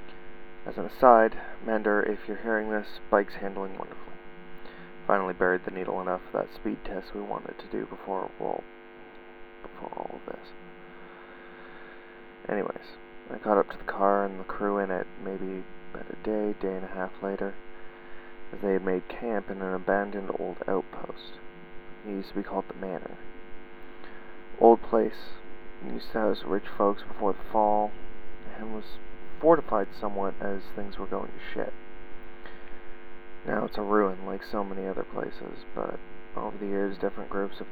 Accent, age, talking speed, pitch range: American, 30-49, 165 wpm, 90-100 Hz